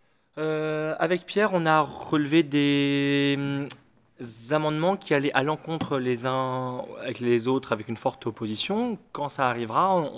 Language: French